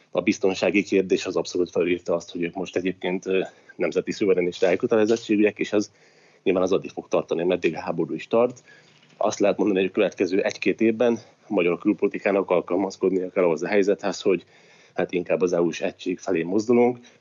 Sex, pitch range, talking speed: male, 95-120 Hz, 175 wpm